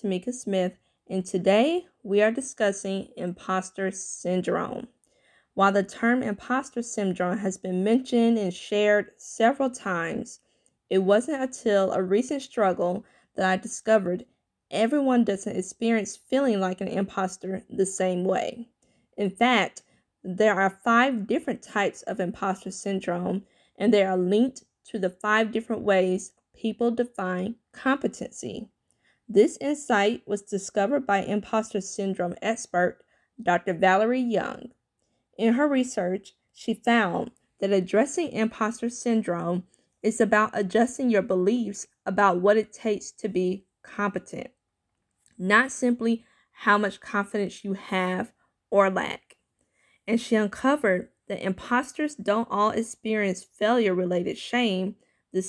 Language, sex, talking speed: English, female, 125 wpm